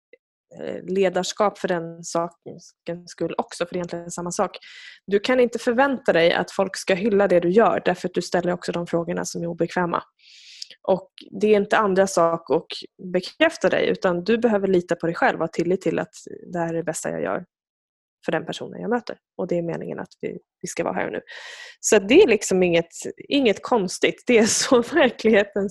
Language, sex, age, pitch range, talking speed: Swedish, female, 20-39, 180-275 Hz, 205 wpm